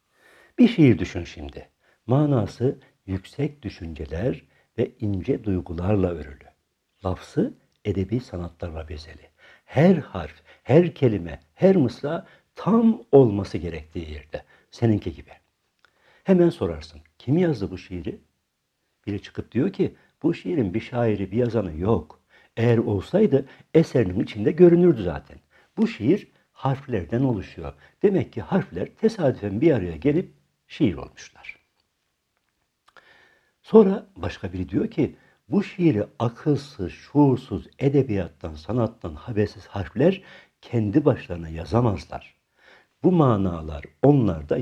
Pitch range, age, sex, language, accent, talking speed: 90-145 Hz, 60-79, male, Turkish, native, 110 wpm